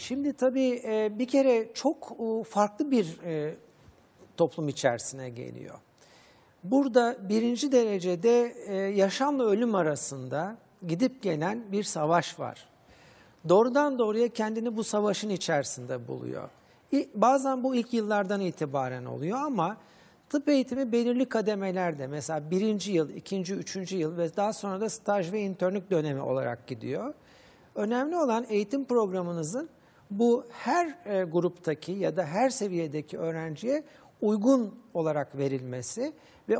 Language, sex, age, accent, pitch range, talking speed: Turkish, male, 60-79, native, 165-225 Hz, 115 wpm